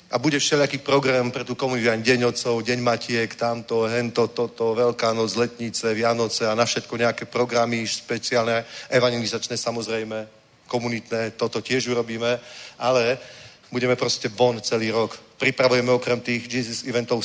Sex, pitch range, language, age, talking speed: male, 115-130 Hz, Czech, 40-59, 145 wpm